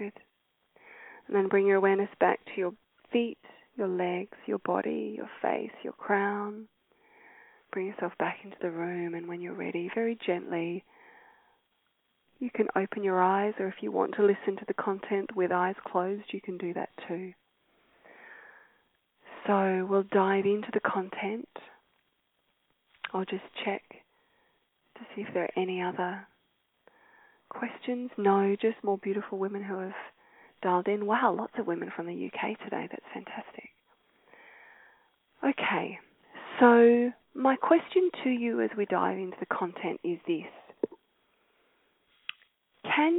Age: 20-39